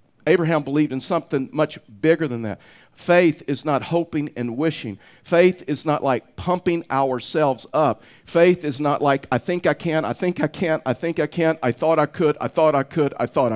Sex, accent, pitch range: male, American, 150-180 Hz